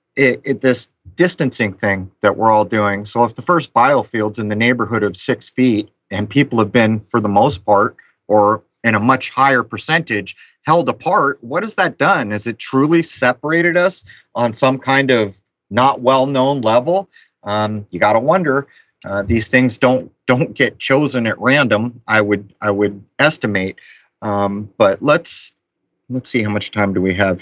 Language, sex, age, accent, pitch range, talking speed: English, male, 30-49, American, 100-125 Hz, 175 wpm